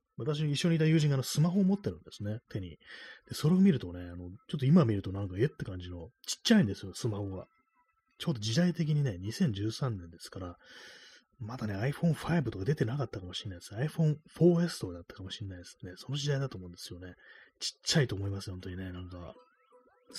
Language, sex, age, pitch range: Japanese, male, 30-49, 95-150 Hz